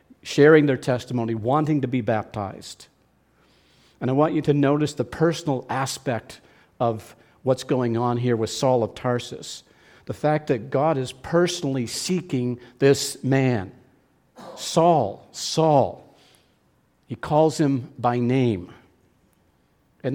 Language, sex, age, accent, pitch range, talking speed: English, male, 50-69, American, 125-150 Hz, 125 wpm